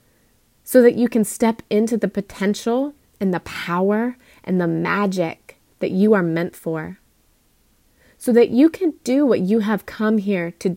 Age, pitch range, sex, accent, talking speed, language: 30-49, 180-220 Hz, female, American, 165 wpm, English